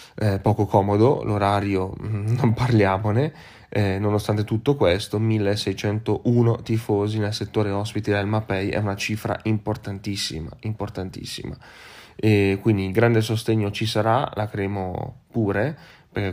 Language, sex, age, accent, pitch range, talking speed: Italian, male, 20-39, native, 100-115 Hz, 120 wpm